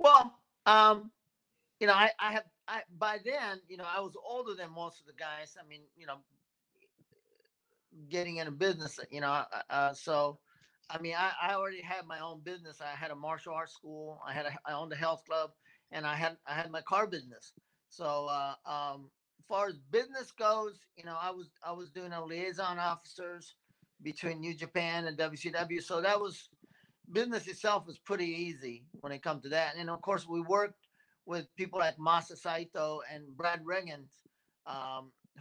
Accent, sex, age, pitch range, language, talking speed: American, male, 40-59, 155-195 Hz, English, 190 wpm